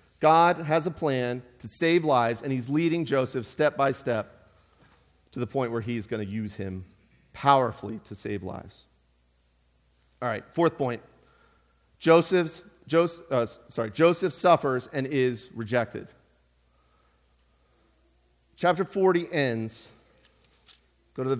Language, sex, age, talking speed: English, male, 40-59, 130 wpm